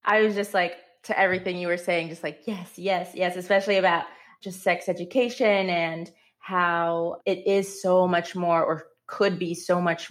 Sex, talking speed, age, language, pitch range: female, 185 wpm, 20-39, English, 155-175 Hz